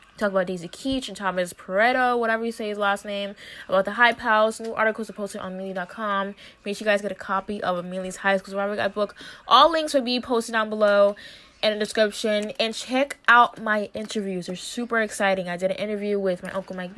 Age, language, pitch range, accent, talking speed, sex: 10-29, English, 190-225 Hz, American, 225 wpm, female